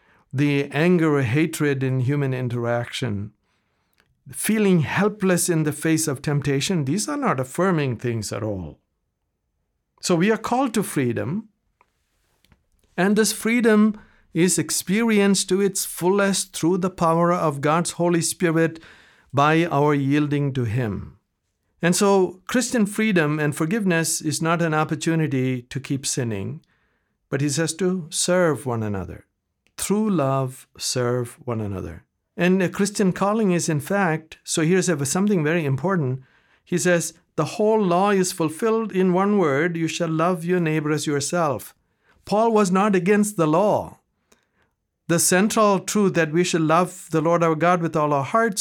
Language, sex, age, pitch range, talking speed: English, male, 50-69, 140-195 Hz, 150 wpm